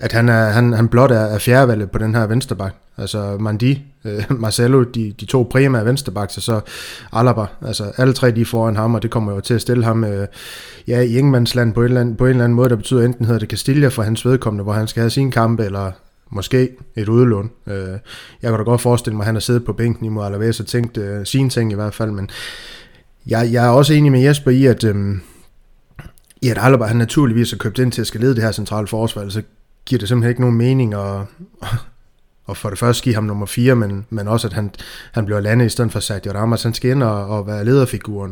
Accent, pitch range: native, 105-120 Hz